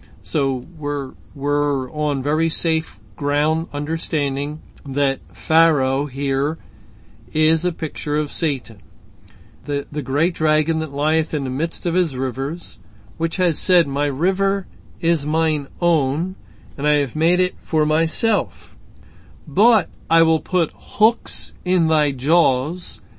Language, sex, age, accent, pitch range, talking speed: English, male, 50-69, American, 135-175 Hz, 130 wpm